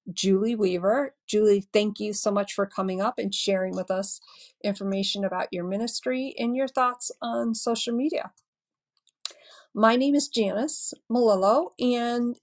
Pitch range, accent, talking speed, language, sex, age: 190-235 Hz, American, 145 wpm, English, female, 50-69